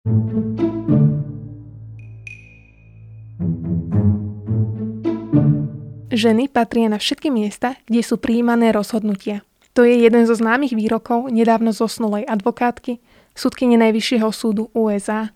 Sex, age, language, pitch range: female, 20-39, Slovak, 210-235 Hz